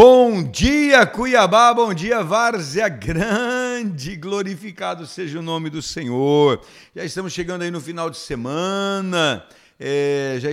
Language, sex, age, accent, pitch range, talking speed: Portuguese, male, 50-69, Brazilian, 155-205 Hz, 125 wpm